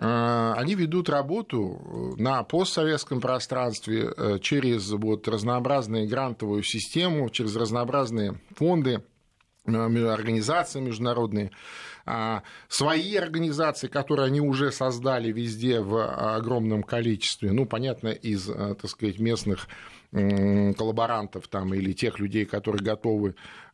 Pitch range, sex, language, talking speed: 110-155 Hz, male, Russian, 100 wpm